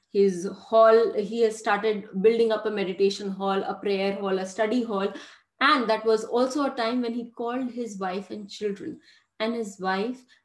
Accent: Indian